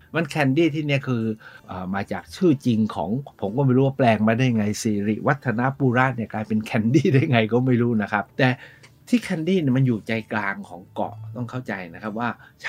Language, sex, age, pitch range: Thai, male, 60-79, 110-135 Hz